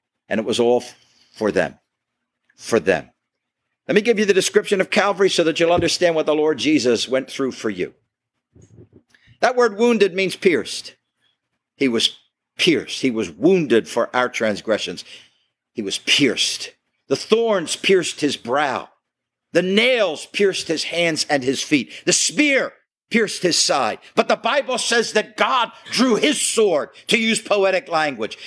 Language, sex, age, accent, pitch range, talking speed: English, male, 50-69, American, 190-285 Hz, 160 wpm